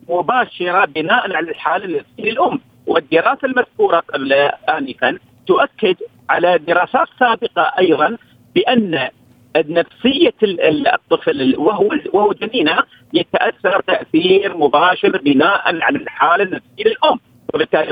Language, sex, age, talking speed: Arabic, male, 50-69, 100 wpm